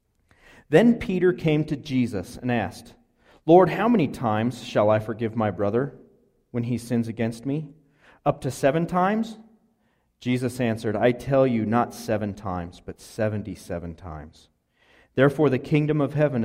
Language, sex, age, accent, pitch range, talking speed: English, male, 40-59, American, 110-140 Hz, 150 wpm